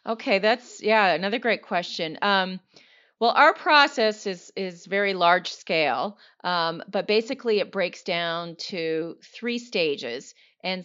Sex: female